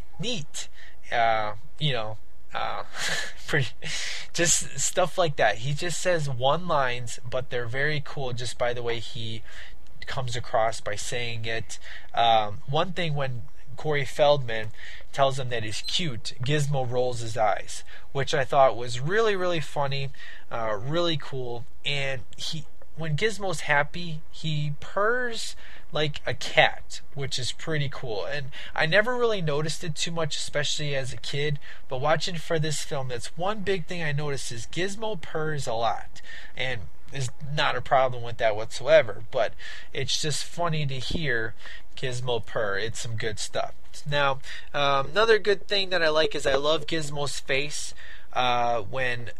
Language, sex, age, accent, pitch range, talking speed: English, male, 20-39, American, 120-155 Hz, 160 wpm